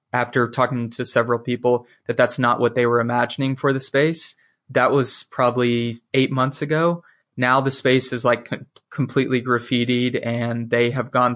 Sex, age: male, 20-39